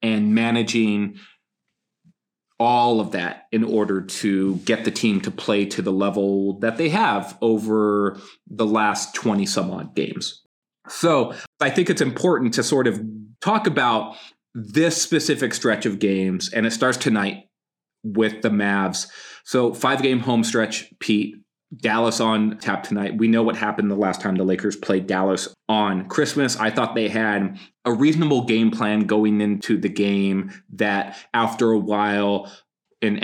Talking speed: 160 wpm